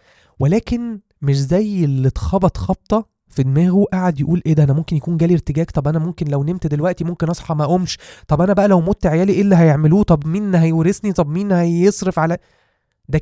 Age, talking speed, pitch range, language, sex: 20-39, 200 wpm, 130-170 Hz, Arabic, male